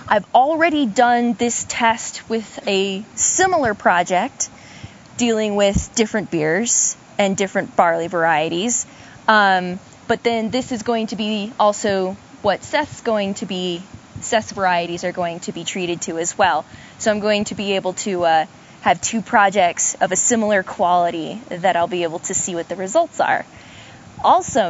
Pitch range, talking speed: 180-230 Hz, 165 wpm